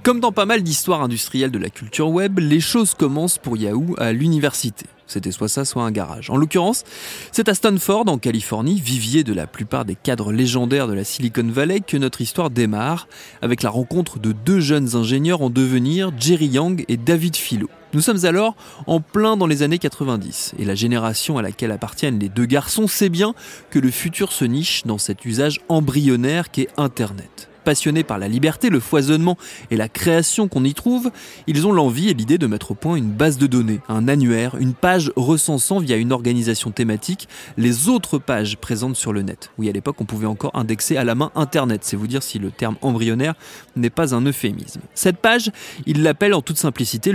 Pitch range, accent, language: 115-170 Hz, French, French